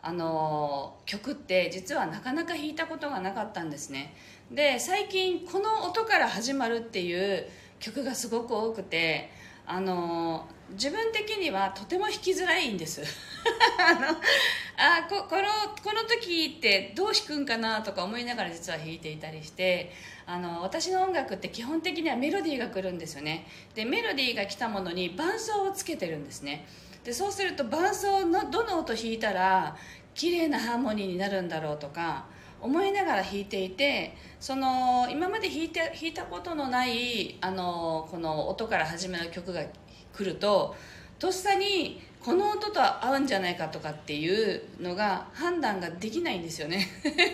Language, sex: Japanese, female